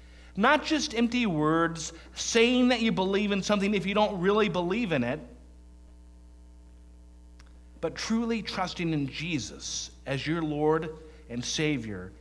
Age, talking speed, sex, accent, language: 50-69, 135 wpm, male, American, English